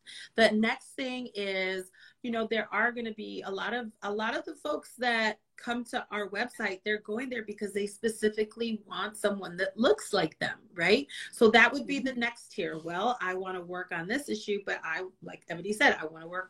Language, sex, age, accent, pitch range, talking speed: English, female, 30-49, American, 185-235 Hz, 220 wpm